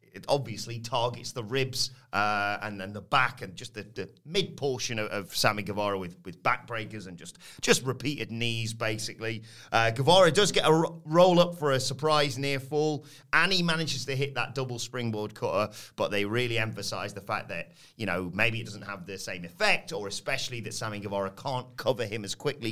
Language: English